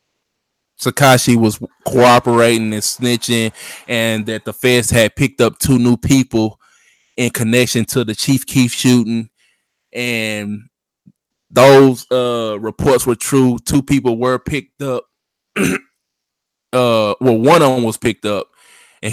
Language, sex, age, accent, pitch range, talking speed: English, male, 20-39, American, 115-130 Hz, 130 wpm